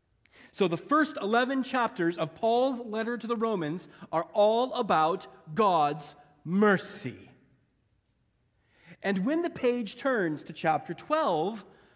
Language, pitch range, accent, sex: English, 140-225 Hz, American, male